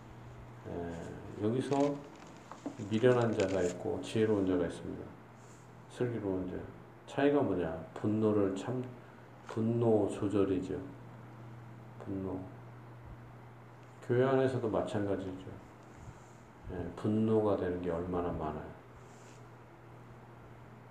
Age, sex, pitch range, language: 40-59, male, 95-120 Hz, Korean